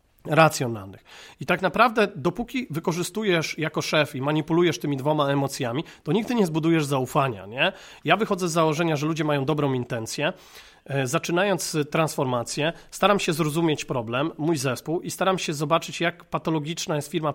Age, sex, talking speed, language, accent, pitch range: 30-49, male, 150 wpm, Polish, native, 145-180 Hz